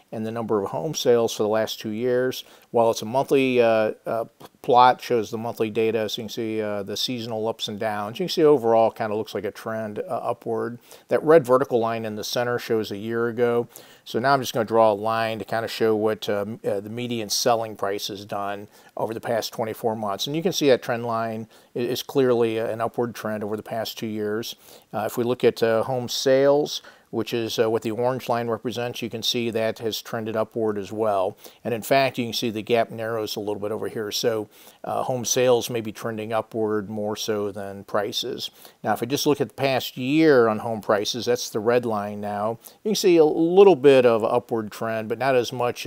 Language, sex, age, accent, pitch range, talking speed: English, male, 50-69, American, 110-120 Hz, 235 wpm